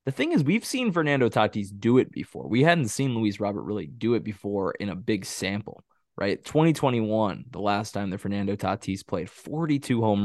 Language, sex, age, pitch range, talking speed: English, male, 20-39, 100-120 Hz, 200 wpm